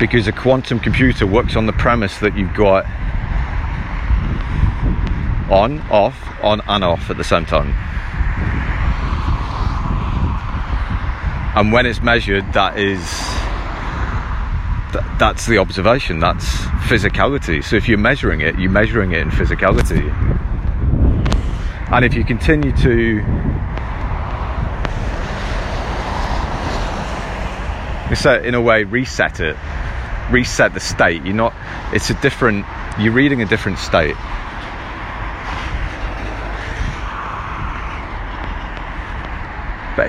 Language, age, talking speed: English, 40-59, 95 wpm